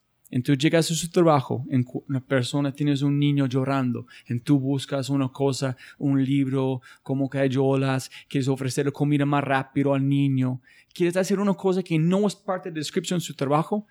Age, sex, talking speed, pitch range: 30-49, male, 185 wpm, 125-155 Hz